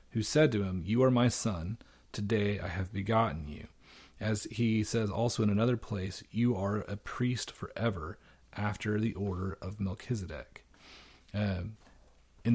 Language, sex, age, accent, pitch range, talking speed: English, male, 30-49, American, 100-115 Hz, 155 wpm